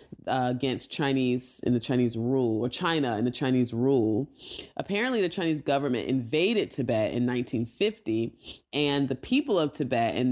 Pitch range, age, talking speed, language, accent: 125-155 Hz, 20-39, 155 wpm, English, American